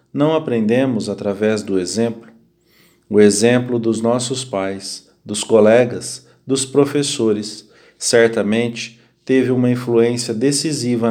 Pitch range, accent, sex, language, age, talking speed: 110-135 Hz, Brazilian, male, English, 40-59, 105 wpm